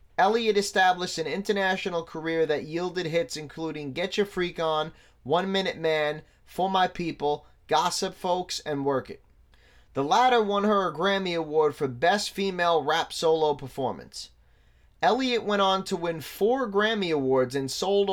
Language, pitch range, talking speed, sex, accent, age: English, 140-185 Hz, 155 wpm, male, American, 30-49